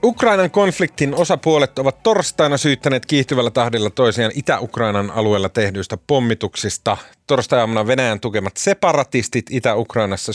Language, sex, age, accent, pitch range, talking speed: Finnish, male, 30-49, native, 95-130 Hz, 105 wpm